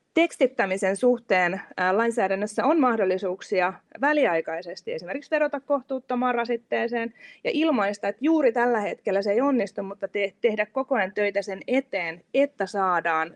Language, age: Finnish, 30-49